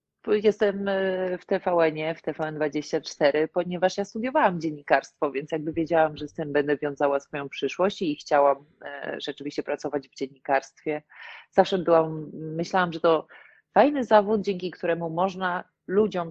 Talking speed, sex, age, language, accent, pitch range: 135 wpm, female, 30-49, Polish, native, 155-190 Hz